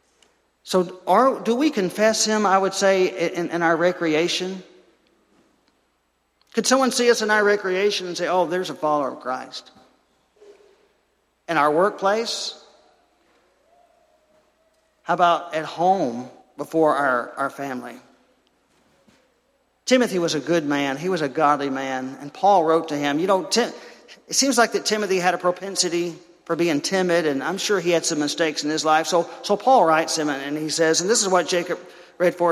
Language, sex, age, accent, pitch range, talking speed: English, male, 50-69, American, 170-220 Hz, 170 wpm